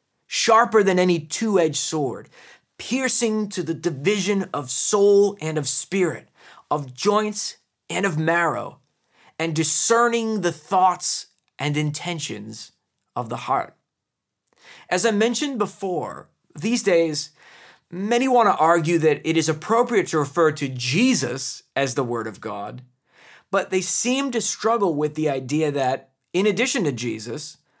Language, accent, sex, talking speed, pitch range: English, American, male, 140 wpm, 145-205 Hz